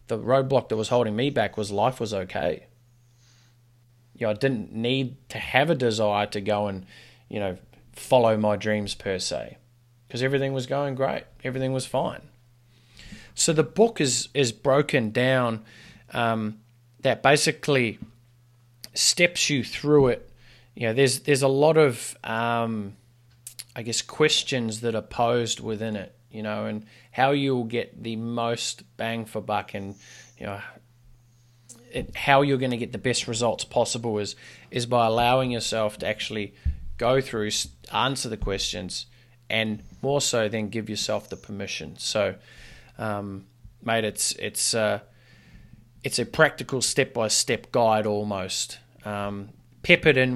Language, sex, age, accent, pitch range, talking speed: English, male, 20-39, Australian, 110-130 Hz, 155 wpm